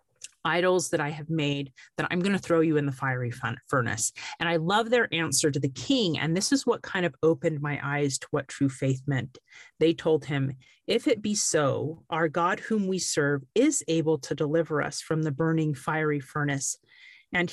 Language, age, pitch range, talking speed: English, 40-59, 145-180 Hz, 205 wpm